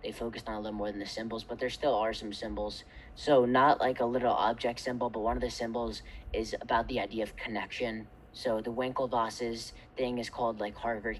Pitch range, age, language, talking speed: 105-125 Hz, 20-39, English, 220 wpm